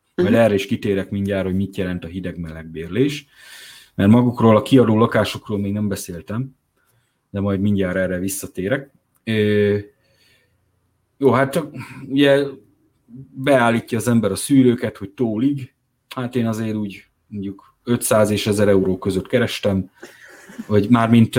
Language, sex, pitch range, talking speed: Hungarian, male, 95-120 Hz, 135 wpm